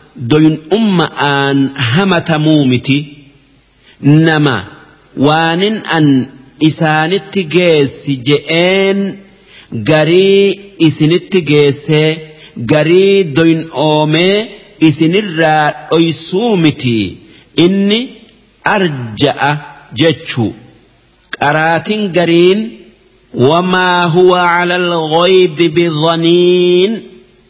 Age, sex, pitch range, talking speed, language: 50-69, male, 145-185 Hz, 65 wpm, English